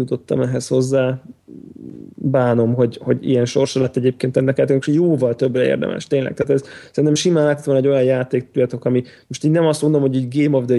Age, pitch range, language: 20-39, 125-145 Hz, Hungarian